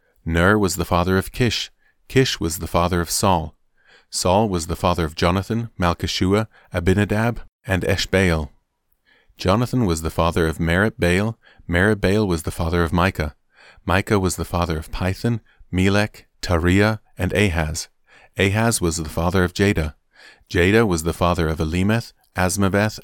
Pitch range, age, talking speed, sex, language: 85-105 Hz, 40-59, 145 wpm, male, English